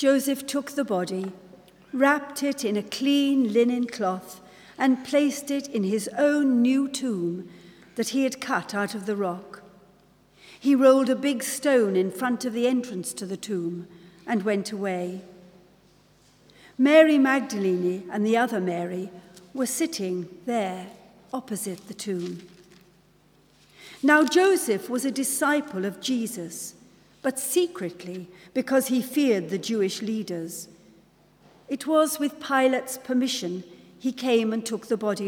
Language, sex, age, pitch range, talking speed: English, female, 60-79, 185-265 Hz, 140 wpm